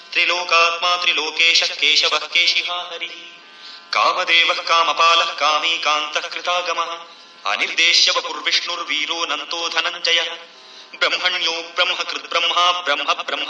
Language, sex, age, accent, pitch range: Marathi, male, 30-49, native, 165-175 Hz